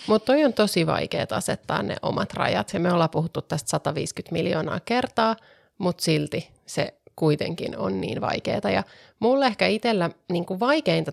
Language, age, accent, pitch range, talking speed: Finnish, 30-49, native, 190-250 Hz, 155 wpm